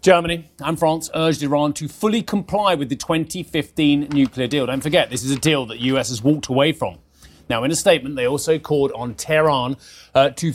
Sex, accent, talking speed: male, British, 205 wpm